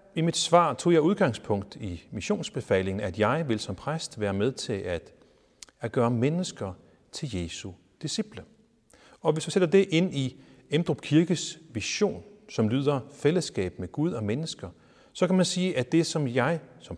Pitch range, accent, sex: 95-155 Hz, native, male